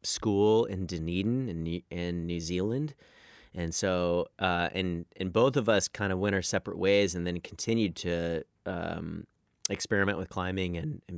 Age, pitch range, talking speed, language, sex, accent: 30-49, 85-100 Hz, 170 wpm, English, male, American